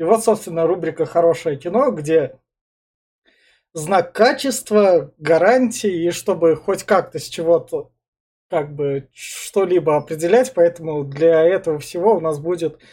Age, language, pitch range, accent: 20-39, Russian, 160-200 Hz, native